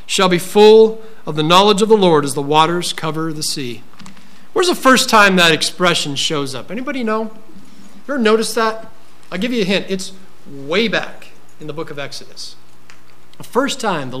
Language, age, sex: English, 50-69, male